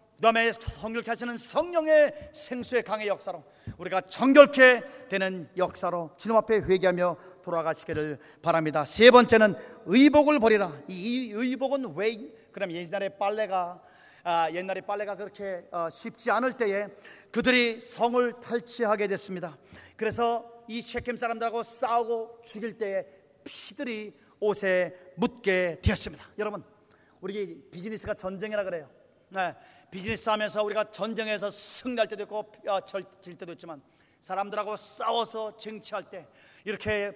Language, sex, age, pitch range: Korean, male, 40-59, 195-235 Hz